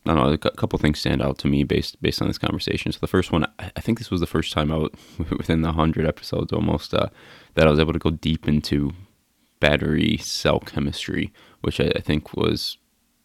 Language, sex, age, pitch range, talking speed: English, male, 20-39, 75-85 Hz, 220 wpm